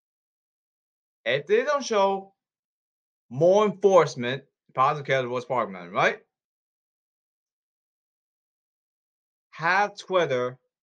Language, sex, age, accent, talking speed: English, male, 30-49, American, 85 wpm